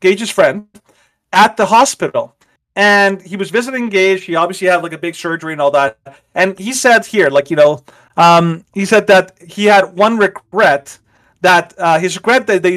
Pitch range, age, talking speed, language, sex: 160-205 Hz, 30-49, 195 wpm, English, male